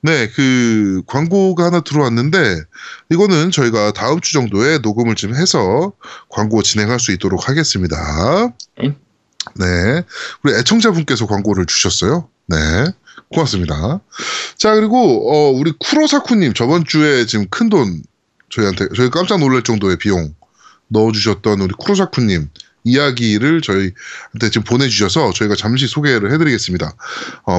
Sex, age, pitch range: male, 20-39, 105-170 Hz